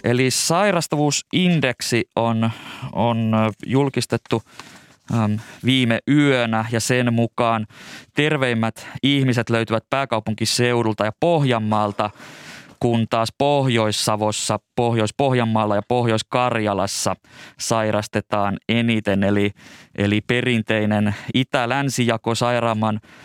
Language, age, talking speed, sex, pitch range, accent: Finnish, 20-39, 75 wpm, male, 110-130 Hz, native